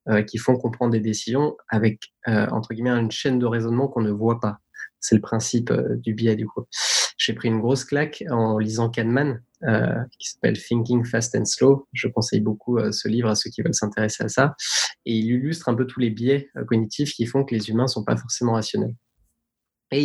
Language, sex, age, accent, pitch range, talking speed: French, male, 20-39, French, 115-135 Hz, 215 wpm